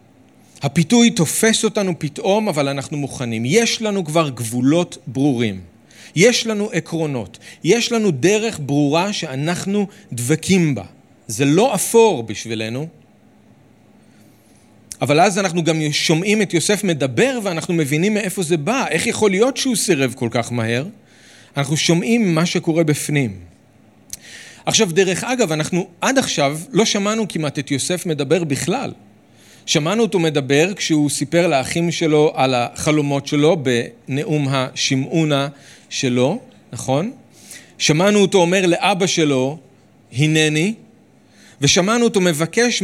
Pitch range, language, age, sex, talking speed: 140-205 Hz, Hebrew, 40-59, male, 125 wpm